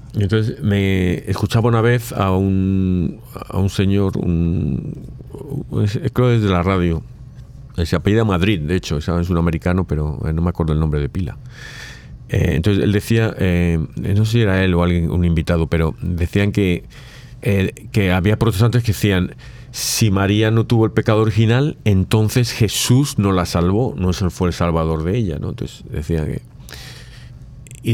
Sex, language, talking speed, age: male, Spanish, 170 wpm, 40-59